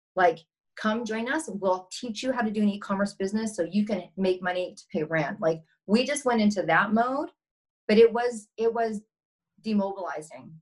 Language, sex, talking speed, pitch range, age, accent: English, female, 190 wpm, 180-215 Hz, 40-59, American